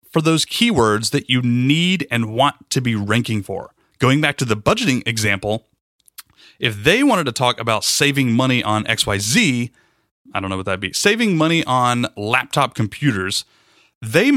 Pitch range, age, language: 115-160 Hz, 30-49, English